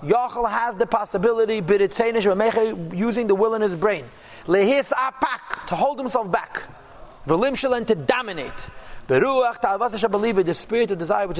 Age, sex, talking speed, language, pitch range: 40-59, male, 110 wpm, English, 185-245 Hz